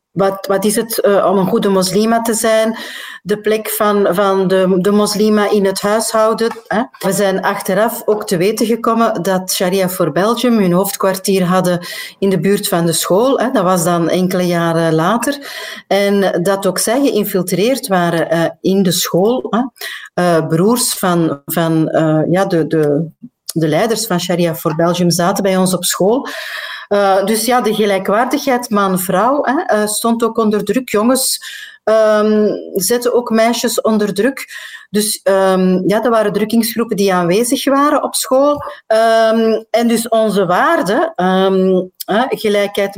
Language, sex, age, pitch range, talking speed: Dutch, female, 40-59, 185-225 Hz, 145 wpm